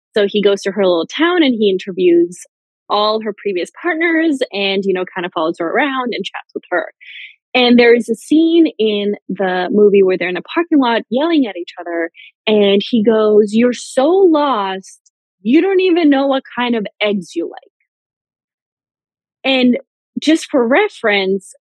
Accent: American